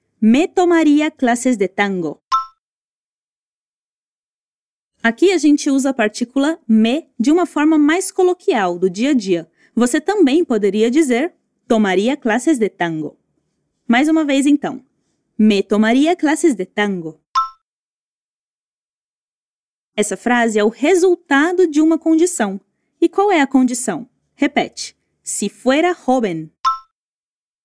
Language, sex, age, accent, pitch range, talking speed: Portuguese, female, 20-39, Brazilian, 225-320 Hz, 120 wpm